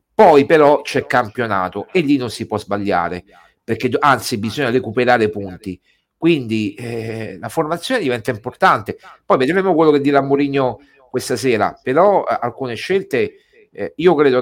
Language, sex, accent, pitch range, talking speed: Italian, male, native, 110-145 Hz, 150 wpm